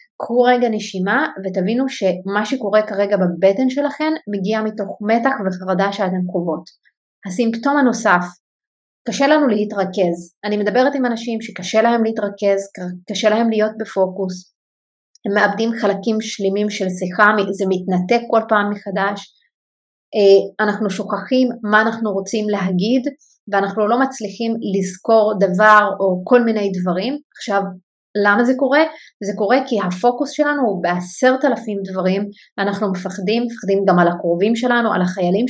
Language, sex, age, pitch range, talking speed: Hebrew, female, 30-49, 195-235 Hz, 135 wpm